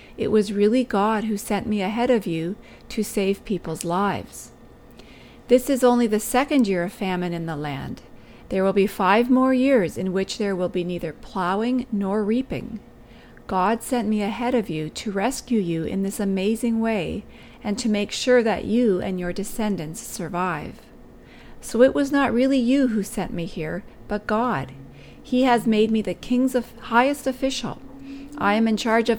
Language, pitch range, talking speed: English, 190-245 Hz, 180 wpm